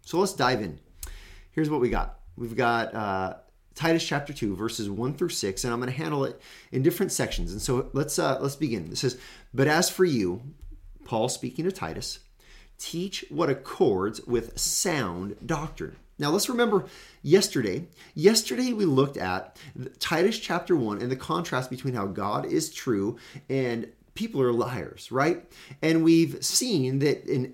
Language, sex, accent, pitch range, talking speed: English, male, American, 110-165 Hz, 170 wpm